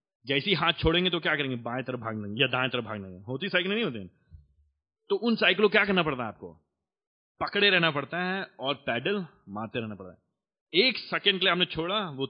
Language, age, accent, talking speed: Hindi, 30-49, native, 205 wpm